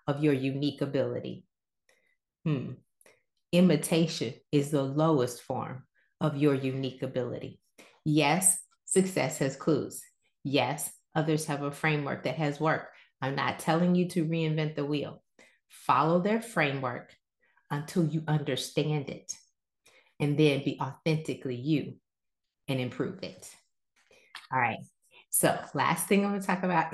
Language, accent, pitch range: English, American, 135-165 Hz